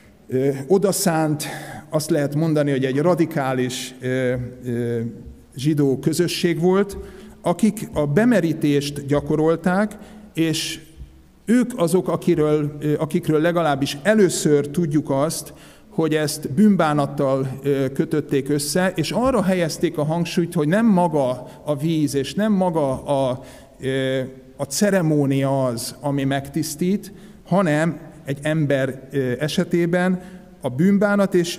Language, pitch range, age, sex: Hungarian, 130-175 Hz, 50-69, male